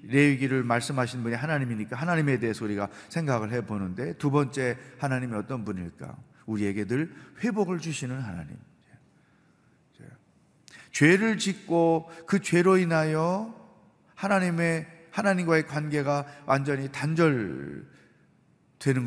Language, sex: Korean, male